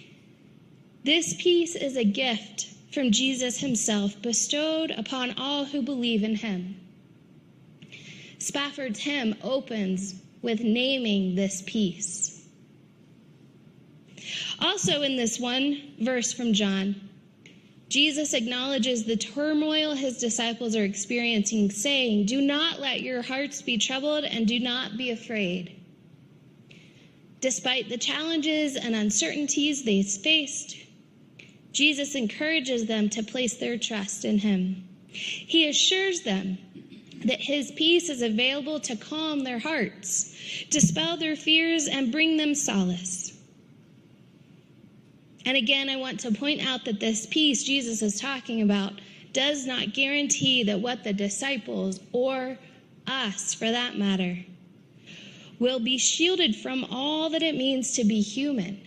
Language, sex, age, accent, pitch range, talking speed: English, female, 20-39, American, 200-275 Hz, 125 wpm